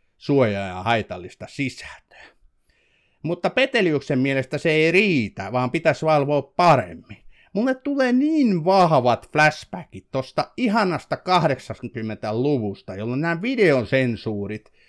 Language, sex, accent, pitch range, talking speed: Finnish, male, native, 120-190 Hz, 100 wpm